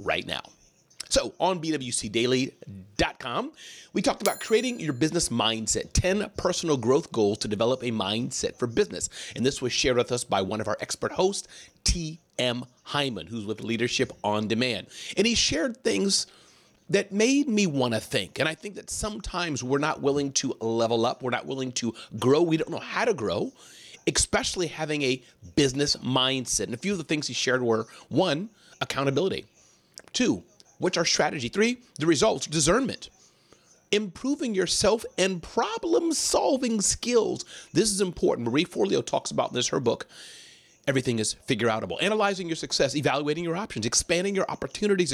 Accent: American